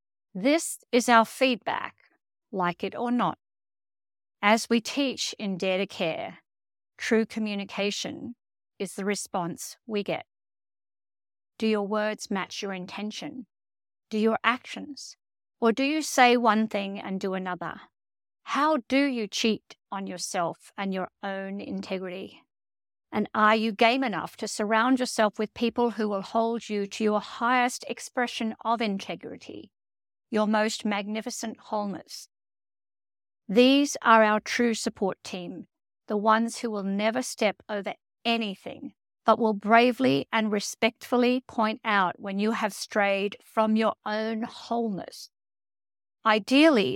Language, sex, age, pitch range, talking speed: English, female, 50-69, 195-235 Hz, 135 wpm